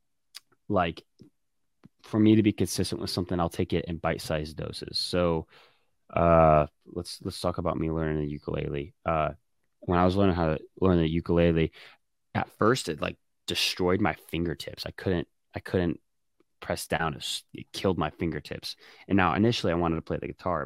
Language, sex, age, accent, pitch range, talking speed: English, male, 20-39, American, 80-95 Hz, 175 wpm